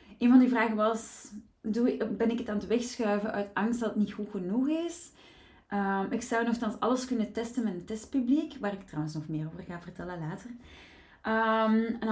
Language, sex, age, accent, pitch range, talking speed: Dutch, female, 30-49, Dutch, 205-250 Hz, 200 wpm